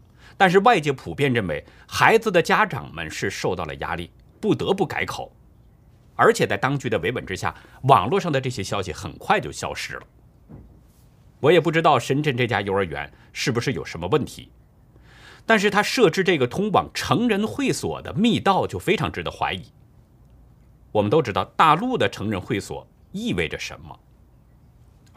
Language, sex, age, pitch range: Chinese, male, 50-69, 110-170 Hz